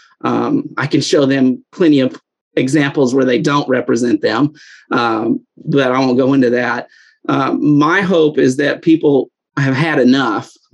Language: English